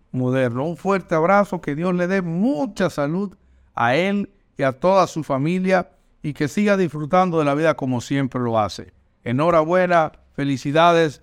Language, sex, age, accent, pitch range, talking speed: Spanish, male, 60-79, American, 130-175 Hz, 160 wpm